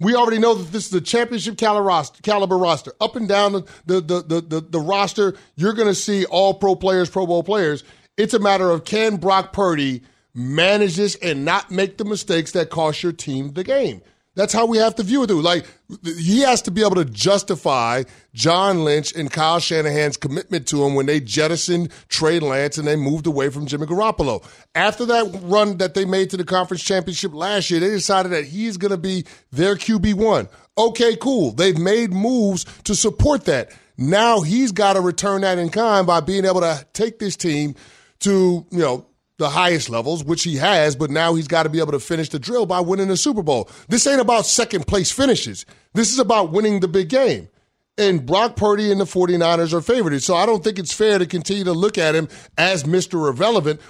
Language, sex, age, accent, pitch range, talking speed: English, male, 30-49, American, 160-205 Hz, 210 wpm